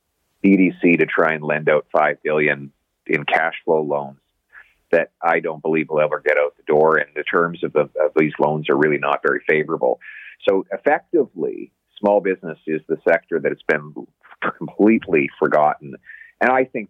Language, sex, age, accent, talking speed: English, male, 40-59, American, 180 wpm